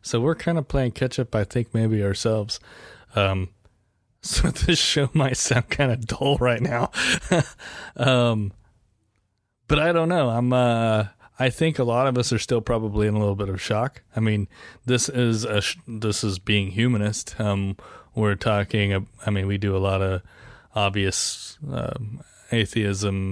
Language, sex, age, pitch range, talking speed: English, male, 20-39, 100-125 Hz, 175 wpm